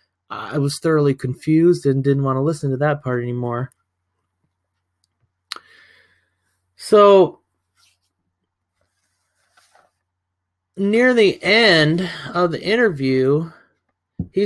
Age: 30-49